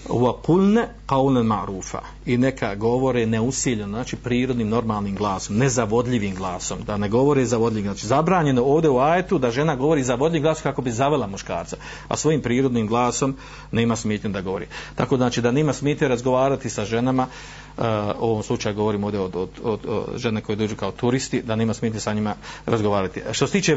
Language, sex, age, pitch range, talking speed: Croatian, male, 50-69, 110-135 Hz, 190 wpm